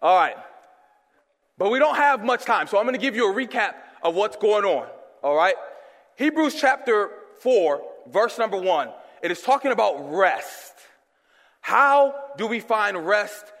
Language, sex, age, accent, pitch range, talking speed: English, male, 20-39, American, 210-275 Hz, 165 wpm